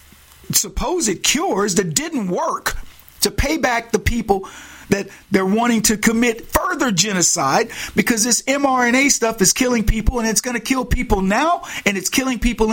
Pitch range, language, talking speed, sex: 170-240 Hz, English, 165 wpm, male